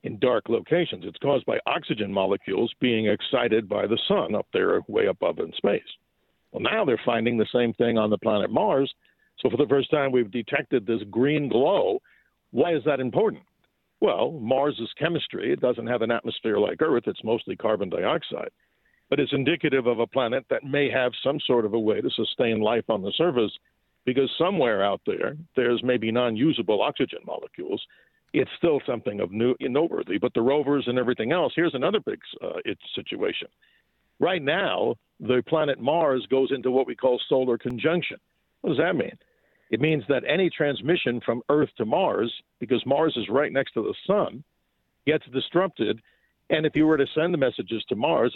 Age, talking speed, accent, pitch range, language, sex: 60-79, 185 wpm, American, 120-145 Hz, English, male